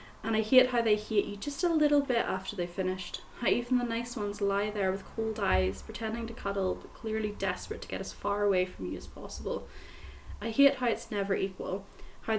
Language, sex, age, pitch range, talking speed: English, female, 10-29, 195-230 Hz, 225 wpm